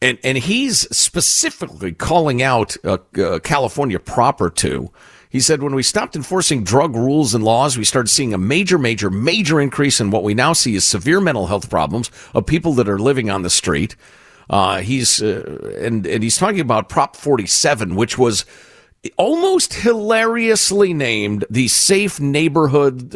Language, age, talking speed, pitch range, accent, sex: English, 50-69, 170 wpm, 115-170 Hz, American, male